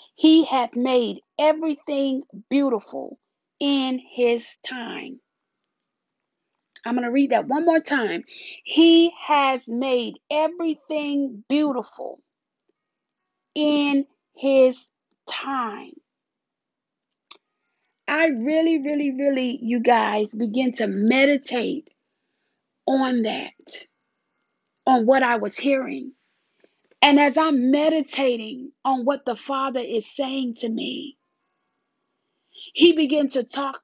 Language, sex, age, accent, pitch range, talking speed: English, female, 40-59, American, 250-300 Hz, 100 wpm